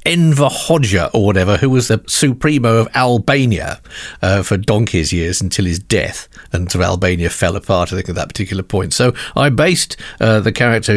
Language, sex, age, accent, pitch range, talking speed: English, male, 50-69, British, 95-130 Hz, 190 wpm